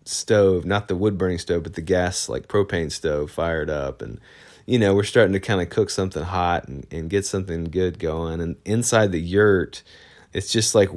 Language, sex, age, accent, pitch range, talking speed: English, male, 30-49, American, 85-100 Hz, 210 wpm